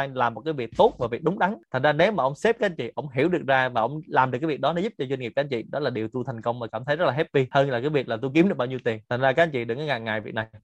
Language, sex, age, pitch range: Vietnamese, male, 20-39, 120-160 Hz